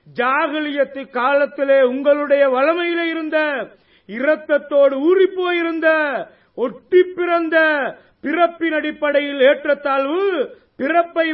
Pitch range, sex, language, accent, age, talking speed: 270-320 Hz, male, Tamil, native, 30-49, 75 wpm